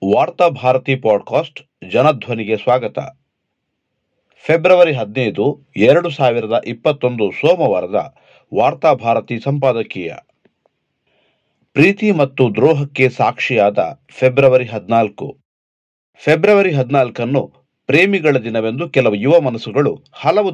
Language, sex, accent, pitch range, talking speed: Kannada, male, native, 120-155 Hz, 80 wpm